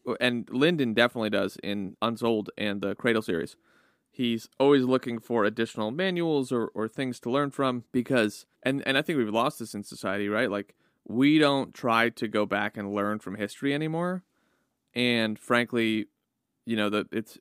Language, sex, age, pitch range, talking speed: English, male, 30-49, 110-130 Hz, 175 wpm